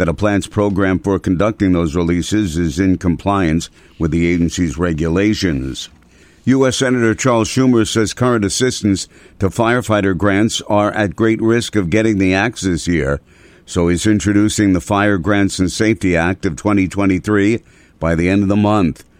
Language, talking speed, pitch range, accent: English, 165 wpm, 85-105 Hz, American